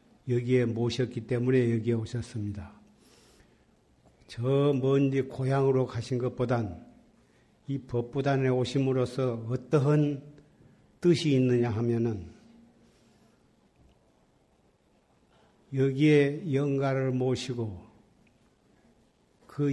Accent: native